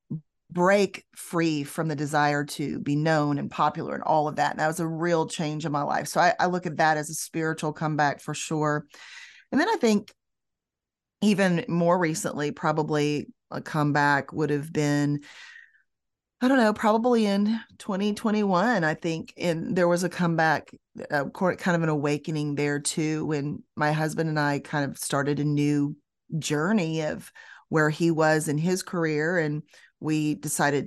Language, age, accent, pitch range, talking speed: English, 30-49, American, 150-175 Hz, 175 wpm